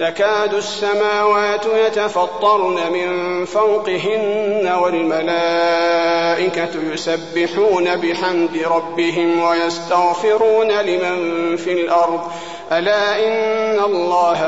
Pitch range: 170-215 Hz